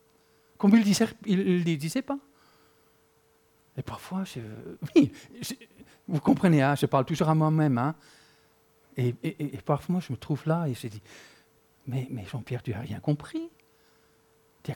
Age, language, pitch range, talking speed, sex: 50-69, French, 150-215 Hz, 165 wpm, male